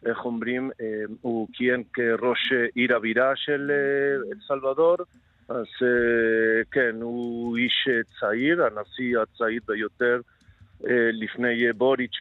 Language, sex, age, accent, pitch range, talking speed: Hebrew, male, 50-69, Argentinian, 120-145 Hz, 95 wpm